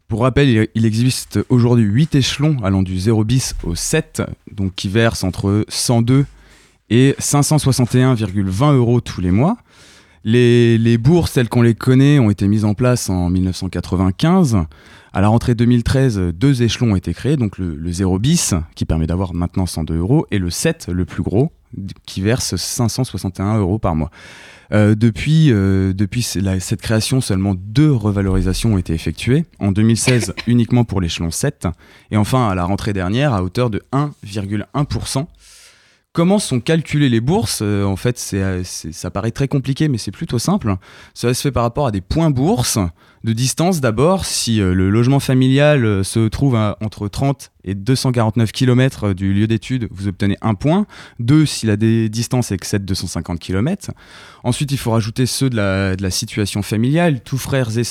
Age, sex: 20-39, male